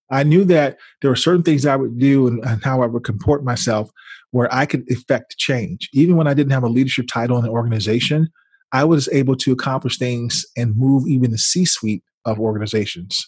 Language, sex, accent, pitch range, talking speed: English, male, American, 115-140 Hz, 205 wpm